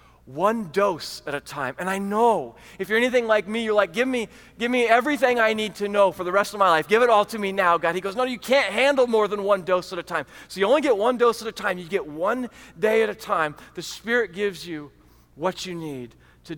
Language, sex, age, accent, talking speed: English, male, 30-49, American, 270 wpm